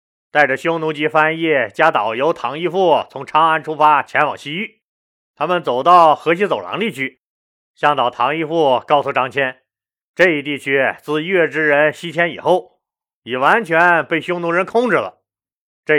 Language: Chinese